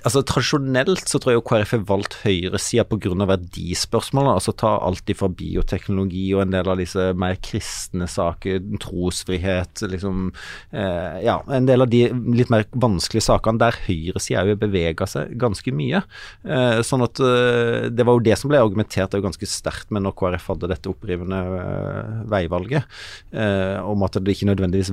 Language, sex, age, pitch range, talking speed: English, male, 30-49, 95-120 Hz, 180 wpm